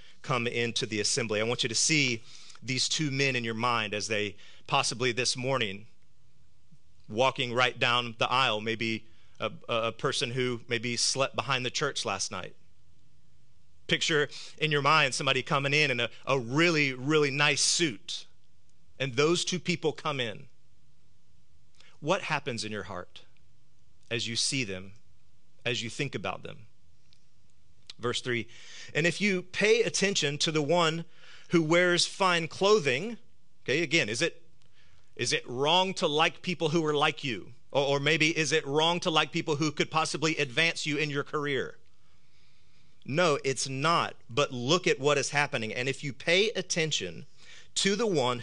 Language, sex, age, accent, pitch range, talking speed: English, male, 30-49, American, 125-170 Hz, 165 wpm